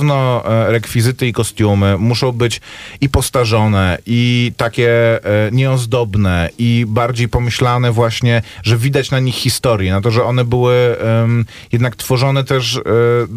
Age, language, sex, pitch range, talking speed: 30-49, Polish, male, 95-125 Hz, 120 wpm